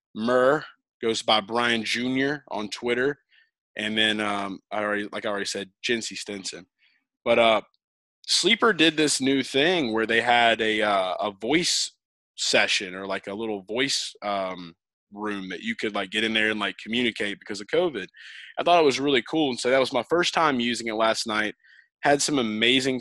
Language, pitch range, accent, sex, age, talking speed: English, 105-120 Hz, American, male, 20-39, 190 wpm